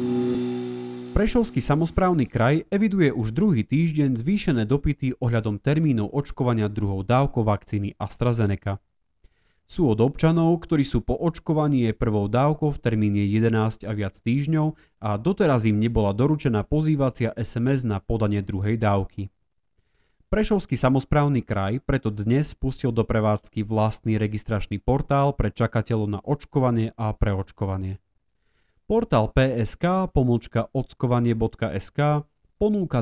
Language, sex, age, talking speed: Slovak, male, 30-49, 115 wpm